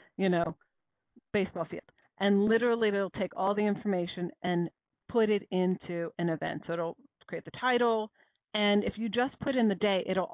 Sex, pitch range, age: female, 180-220 Hz, 40-59